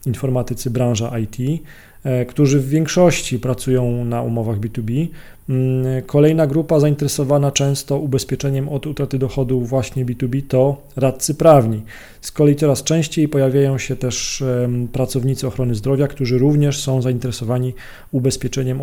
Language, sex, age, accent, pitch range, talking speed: Polish, male, 40-59, native, 125-140 Hz, 120 wpm